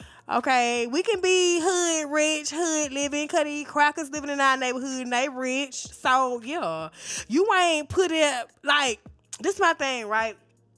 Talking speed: 160 wpm